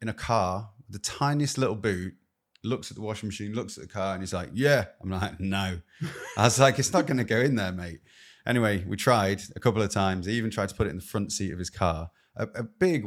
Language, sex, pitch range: English, male, 95-115 Hz